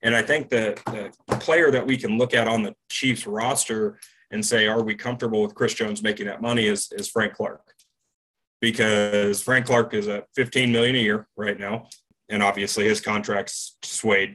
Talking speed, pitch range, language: 190 wpm, 105-145 Hz, English